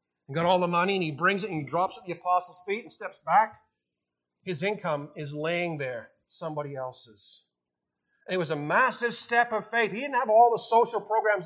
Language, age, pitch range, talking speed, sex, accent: English, 40-59, 150-215 Hz, 210 wpm, male, American